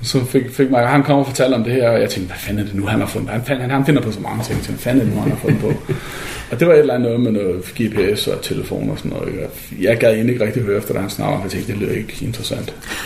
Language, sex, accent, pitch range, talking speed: Danish, male, native, 120-160 Hz, 335 wpm